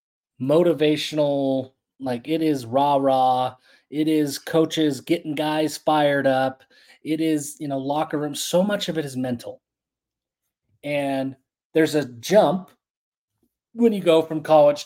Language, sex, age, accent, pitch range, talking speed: English, male, 30-49, American, 125-155 Hz, 135 wpm